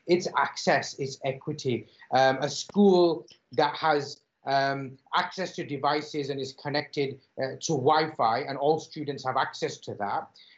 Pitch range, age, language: 135-160 Hz, 30-49, English